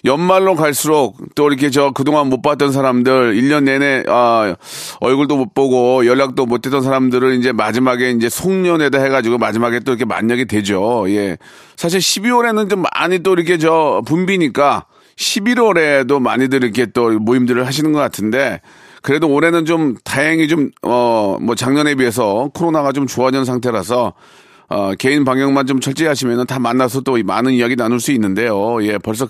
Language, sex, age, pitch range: Korean, male, 40-59, 125-155 Hz